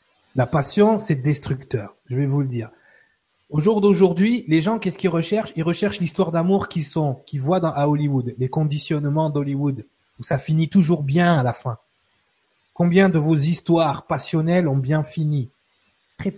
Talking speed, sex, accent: 175 wpm, male, French